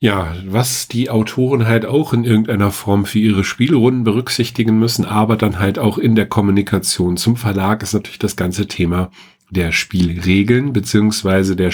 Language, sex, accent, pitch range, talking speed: German, male, German, 90-110 Hz, 165 wpm